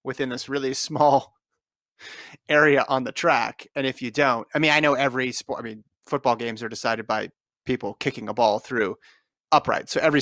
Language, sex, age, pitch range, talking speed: English, male, 30-49, 125-150 Hz, 195 wpm